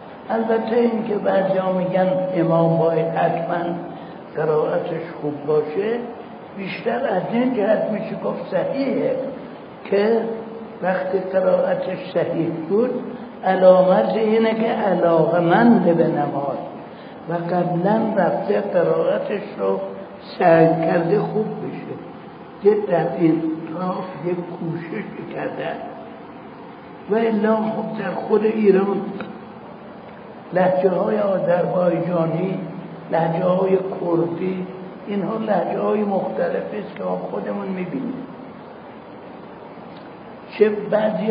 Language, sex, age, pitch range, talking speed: Persian, male, 60-79, 170-220 Hz, 95 wpm